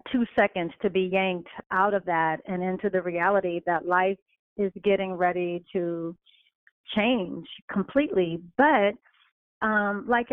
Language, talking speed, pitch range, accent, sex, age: English, 135 wpm, 185-230 Hz, American, female, 40-59